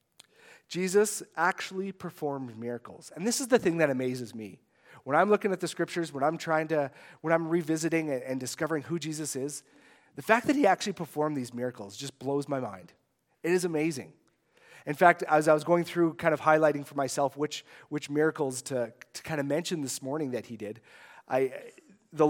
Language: English